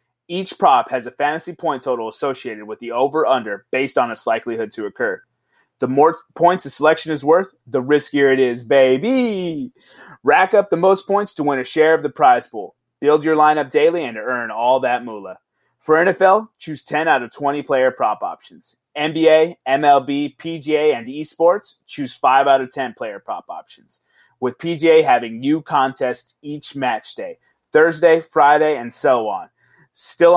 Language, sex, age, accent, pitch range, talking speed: English, male, 30-49, American, 135-180 Hz, 175 wpm